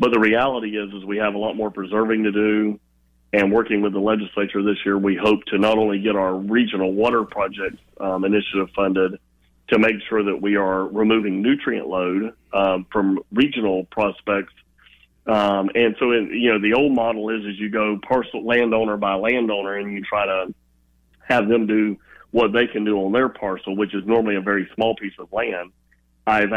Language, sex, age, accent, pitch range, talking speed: English, male, 40-59, American, 95-110 Hz, 195 wpm